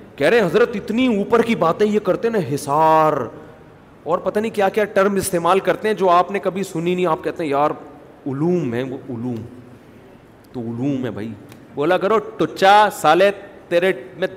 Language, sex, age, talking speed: Urdu, male, 40-59, 190 wpm